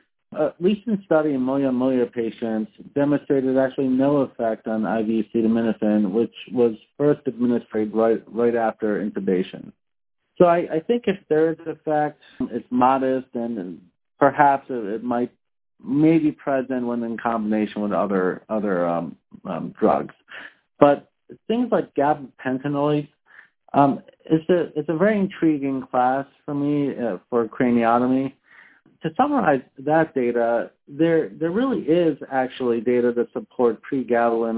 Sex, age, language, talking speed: male, 40-59, English, 130 wpm